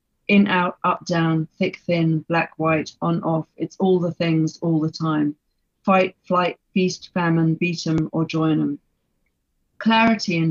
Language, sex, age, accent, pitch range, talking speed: English, female, 40-59, British, 160-185 Hz, 160 wpm